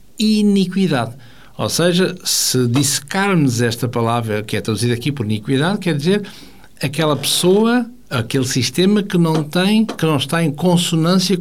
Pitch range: 125-175 Hz